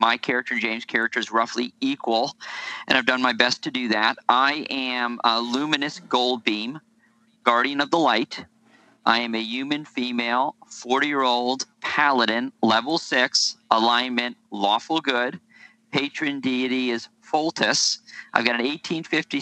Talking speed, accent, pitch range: 150 wpm, American, 120-170 Hz